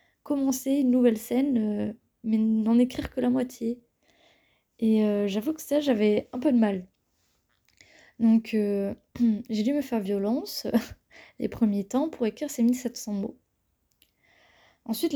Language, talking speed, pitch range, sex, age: French, 145 wpm, 210-250 Hz, female, 20-39